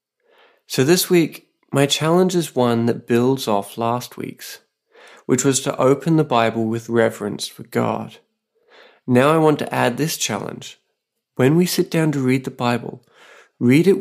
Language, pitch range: English, 115-155 Hz